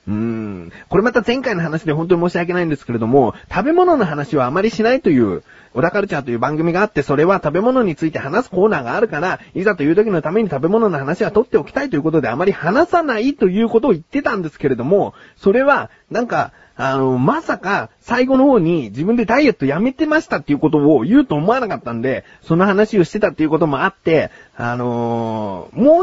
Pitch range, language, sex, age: 135-220 Hz, Japanese, male, 30-49